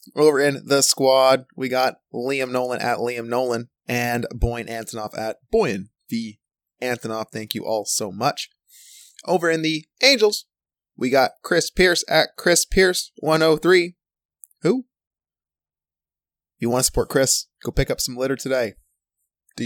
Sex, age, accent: male, 20-39, American